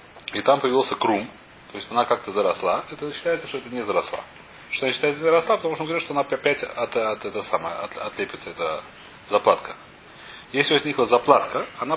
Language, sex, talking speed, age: Russian, male, 185 wpm, 30-49